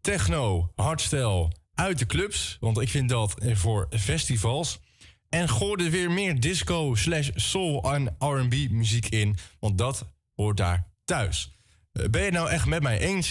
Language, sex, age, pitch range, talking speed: Dutch, male, 20-39, 95-125 Hz, 160 wpm